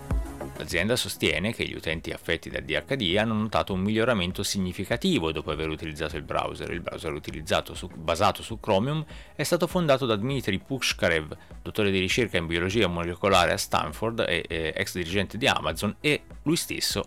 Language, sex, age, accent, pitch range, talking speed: Italian, male, 30-49, native, 90-135 Hz, 170 wpm